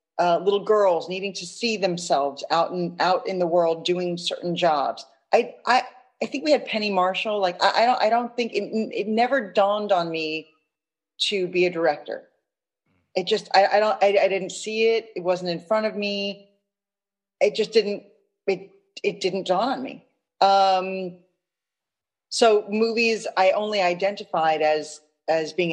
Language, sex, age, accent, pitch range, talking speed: English, female, 40-59, American, 160-200 Hz, 175 wpm